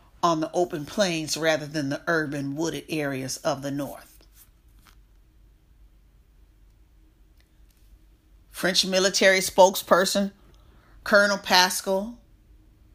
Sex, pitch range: female, 170-265 Hz